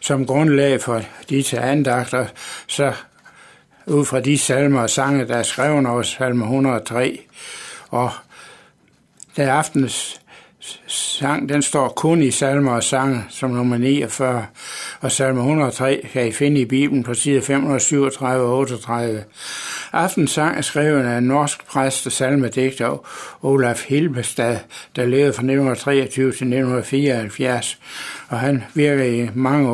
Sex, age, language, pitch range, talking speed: male, 60-79, Danish, 125-140 Hz, 135 wpm